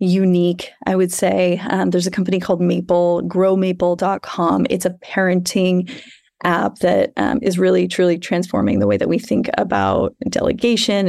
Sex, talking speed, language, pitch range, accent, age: female, 150 wpm, English, 175-230 Hz, American, 30-49